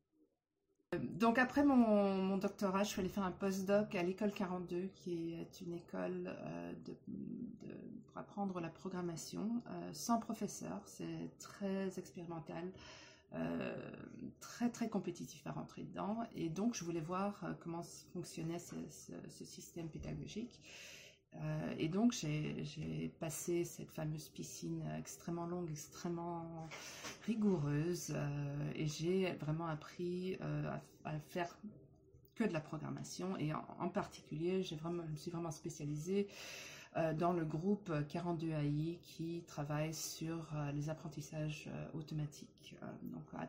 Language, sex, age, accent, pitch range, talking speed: French, female, 30-49, French, 155-185 Hz, 130 wpm